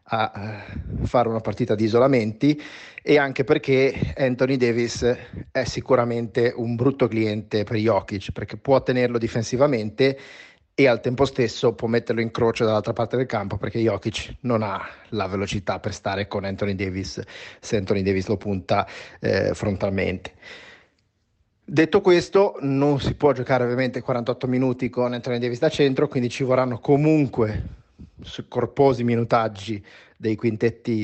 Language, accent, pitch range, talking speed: Italian, native, 110-125 Hz, 145 wpm